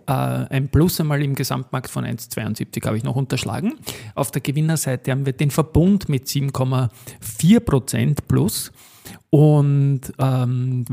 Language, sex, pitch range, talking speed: German, male, 125-150 Hz, 125 wpm